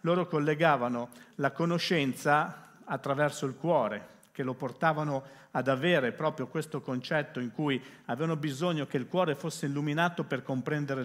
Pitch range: 130-165 Hz